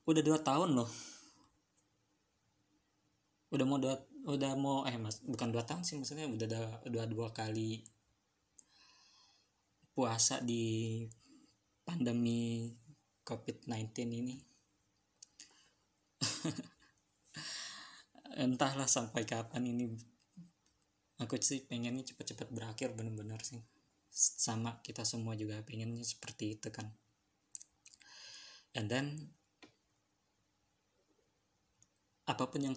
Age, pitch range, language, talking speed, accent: 20-39, 100-125 Hz, Indonesian, 90 wpm, native